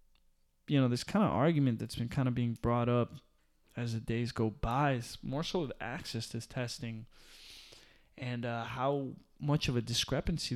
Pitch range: 120-145 Hz